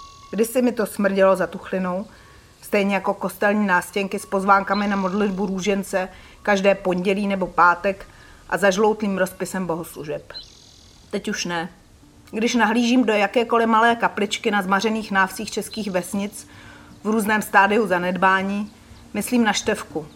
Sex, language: female, Czech